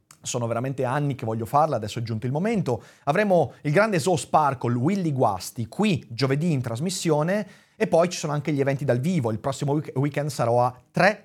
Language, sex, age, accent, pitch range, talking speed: Italian, male, 30-49, native, 125-185 Hz, 195 wpm